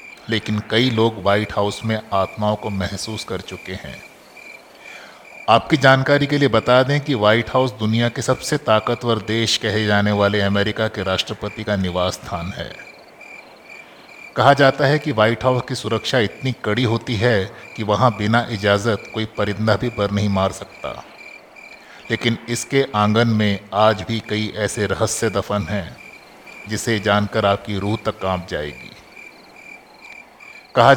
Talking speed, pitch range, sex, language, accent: 155 wpm, 105-125 Hz, male, Hindi, native